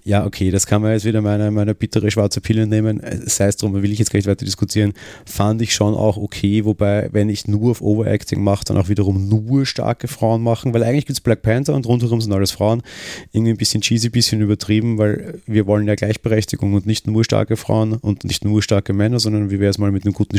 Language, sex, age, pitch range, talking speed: German, male, 30-49, 100-115 Hz, 240 wpm